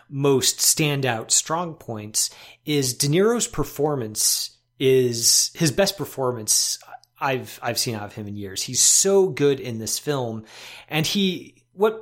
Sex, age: male, 30-49